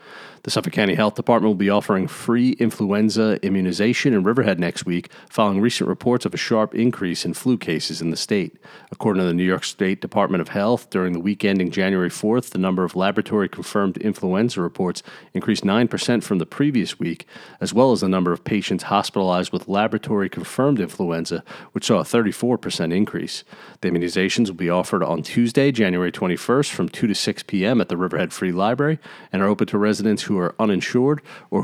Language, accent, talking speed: English, American, 190 wpm